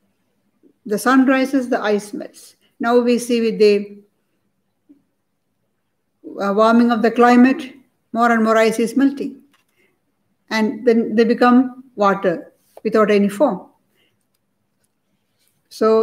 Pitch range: 205-250 Hz